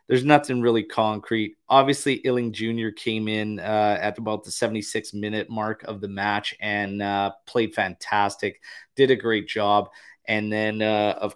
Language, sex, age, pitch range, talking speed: English, male, 30-49, 100-110 Hz, 160 wpm